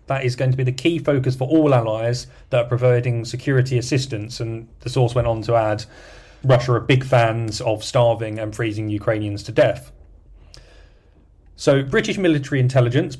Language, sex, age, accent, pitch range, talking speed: English, male, 30-49, British, 110-130 Hz, 175 wpm